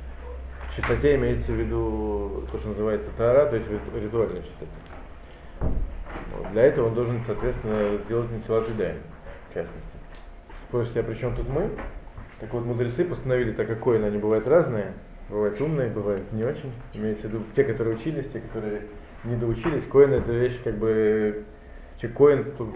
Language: Russian